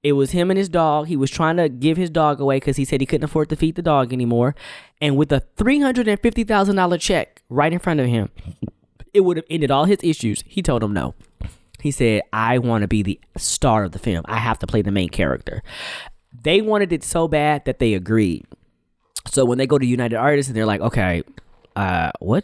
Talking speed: 225 wpm